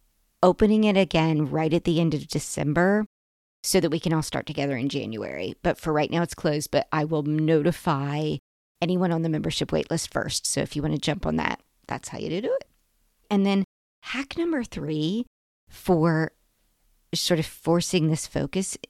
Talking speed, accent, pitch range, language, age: 185 wpm, American, 145-175 Hz, English, 40-59